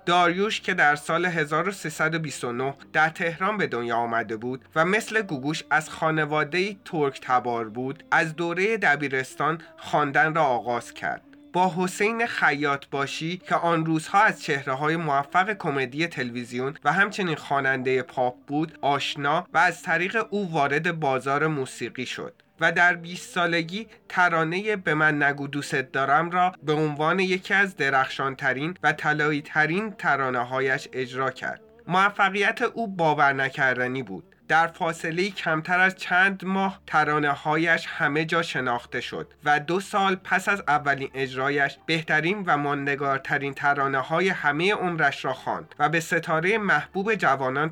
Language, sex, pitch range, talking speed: Persian, male, 140-180 Hz, 135 wpm